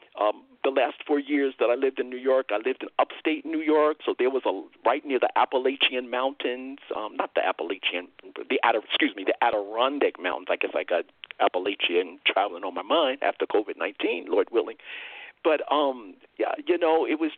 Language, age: English, 50-69